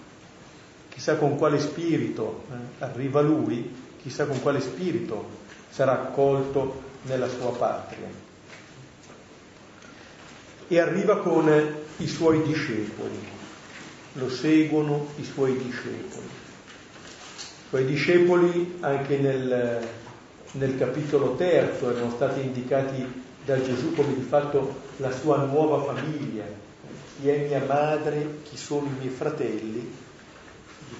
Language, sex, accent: Italian, male, native